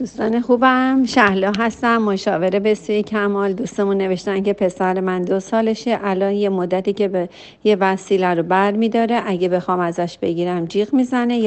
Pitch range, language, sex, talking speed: 180-225 Hz, Persian, female, 155 wpm